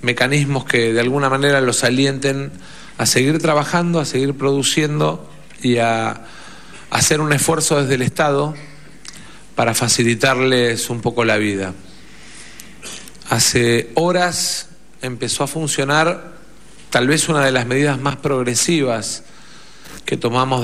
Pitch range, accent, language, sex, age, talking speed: 120-145 Hz, Argentinian, Spanish, male, 40-59, 120 wpm